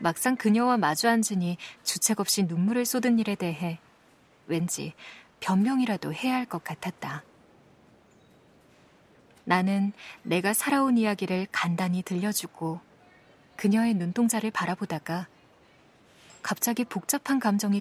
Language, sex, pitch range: Korean, female, 175-220 Hz